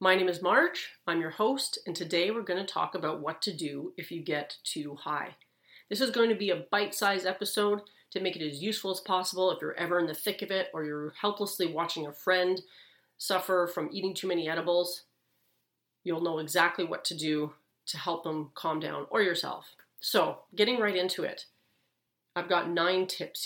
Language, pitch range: English, 165-200 Hz